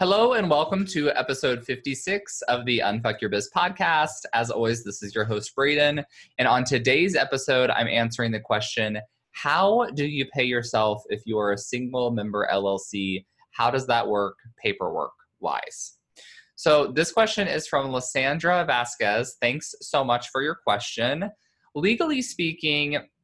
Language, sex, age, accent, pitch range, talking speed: English, male, 20-39, American, 110-150 Hz, 155 wpm